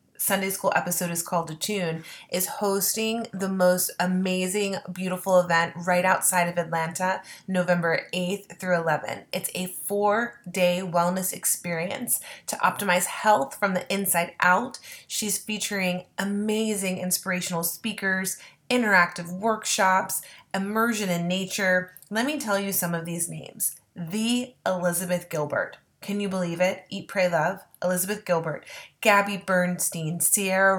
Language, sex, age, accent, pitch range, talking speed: English, female, 20-39, American, 175-205 Hz, 130 wpm